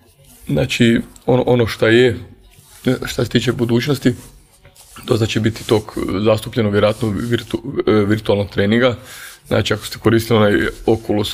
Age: 20-39